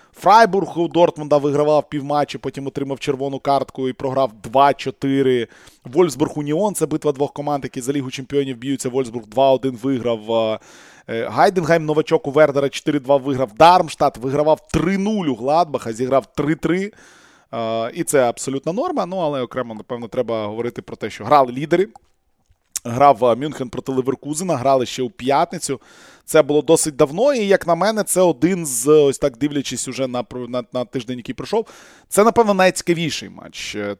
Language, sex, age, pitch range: Ukrainian, male, 20-39, 125-155 Hz